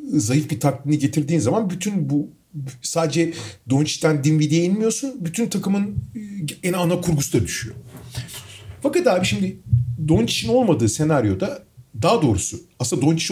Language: Turkish